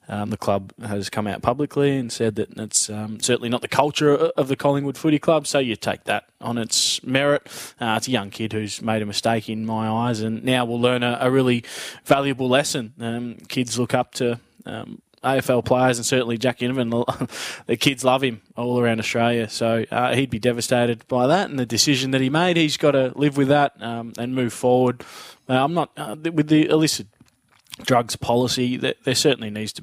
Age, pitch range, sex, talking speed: 20-39, 110-130 Hz, male, 210 wpm